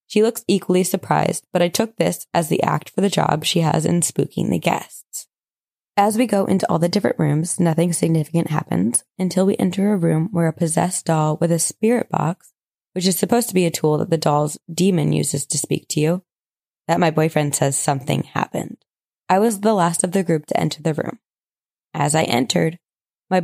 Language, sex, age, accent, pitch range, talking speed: English, female, 20-39, American, 160-190 Hz, 205 wpm